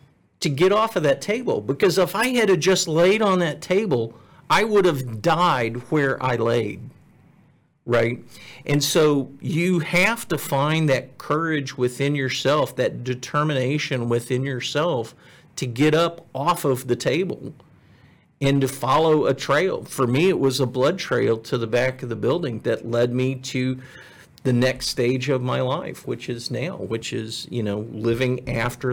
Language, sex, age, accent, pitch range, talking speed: English, male, 50-69, American, 125-160 Hz, 170 wpm